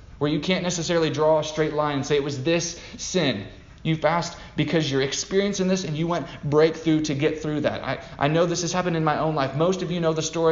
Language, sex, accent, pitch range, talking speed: English, male, American, 145-185 Hz, 250 wpm